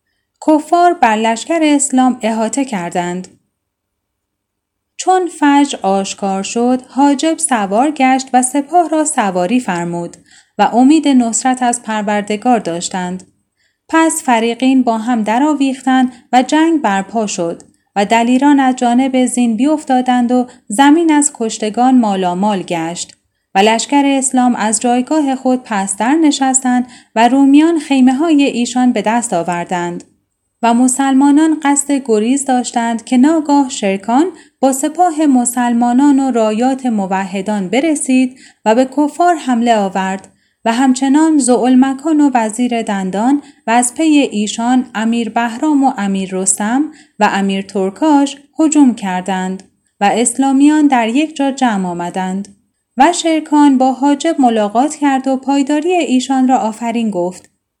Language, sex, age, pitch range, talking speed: Persian, female, 10-29, 215-280 Hz, 125 wpm